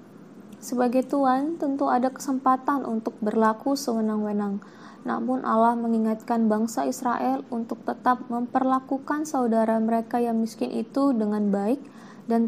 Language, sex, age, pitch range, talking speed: Indonesian, female, 20-39, 220-255 Hz, 115 wpm